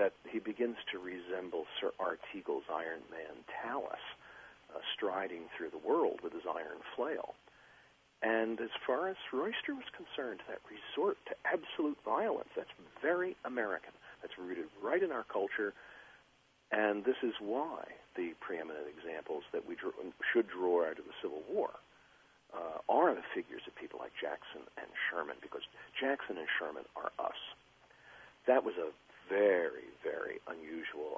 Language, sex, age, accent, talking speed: English, male, 50-69, American, 155 wpm